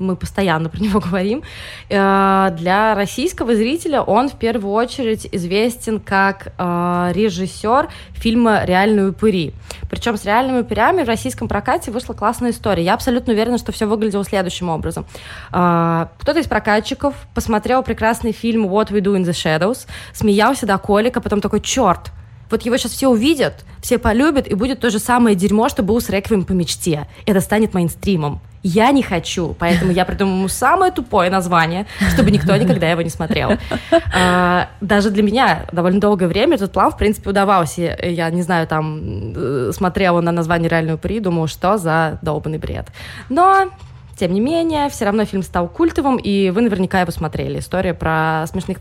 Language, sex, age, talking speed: Russian, female, 20-39, 165 wpm